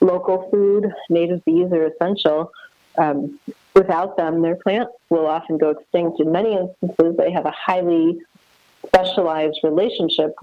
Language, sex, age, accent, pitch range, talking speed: English, female, 30-49, American, 150-180 Hz, 140 wpm